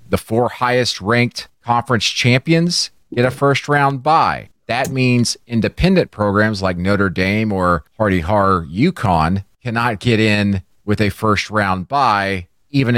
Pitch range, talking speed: 105-140 Hz, 145 wpm